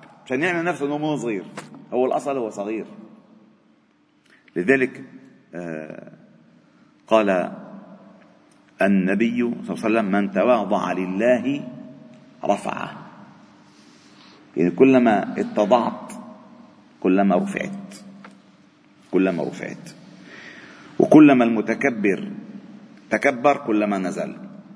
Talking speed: 80 wpm